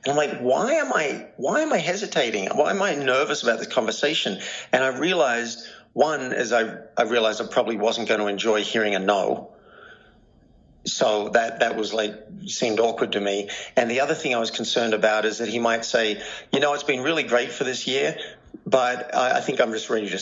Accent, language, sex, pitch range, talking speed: Australian, English, male, 105-125 Hz, 215 wpm